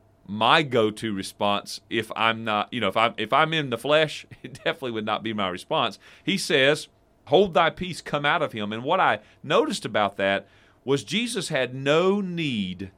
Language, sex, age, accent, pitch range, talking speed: English, male, 40-59, American, 105-140 Hz, 195 wpm